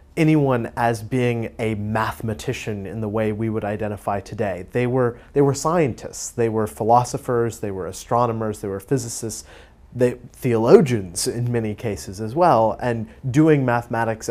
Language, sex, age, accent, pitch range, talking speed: English, male, 30-49, American, 105-120 Hz, 150 wpm